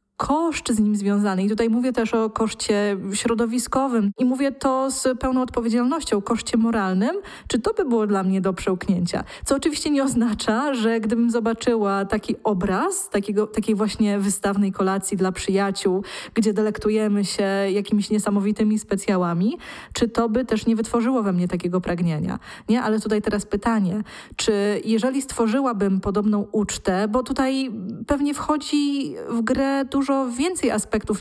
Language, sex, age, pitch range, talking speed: Polish, female, 20-39, 205-245 Hz, 150 wpm